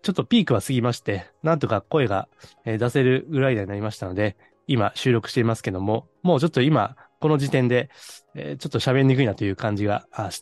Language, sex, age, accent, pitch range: Japanese, male, 20-39, native, 110-145 Hz